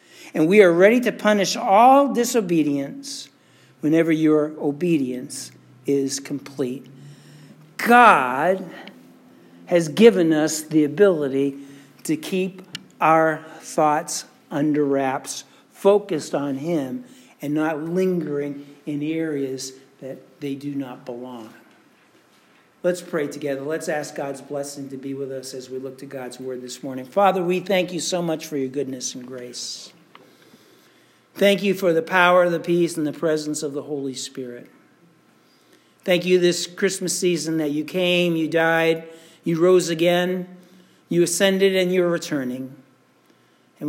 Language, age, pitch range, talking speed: English, 60-79, 140-175 Hz, 140 wpm